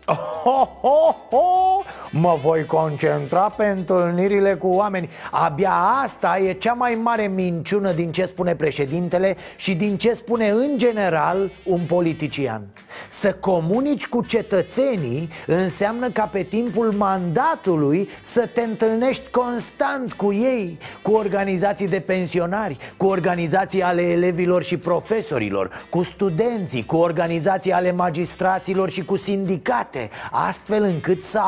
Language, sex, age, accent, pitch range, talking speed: Romanian, male, 30-49, native, 170-210 Hz, 120 wpm